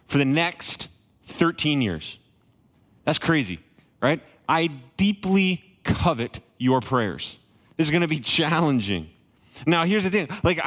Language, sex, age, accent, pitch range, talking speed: English, male, 30-49, American, 125-175 Hz, 130 wpm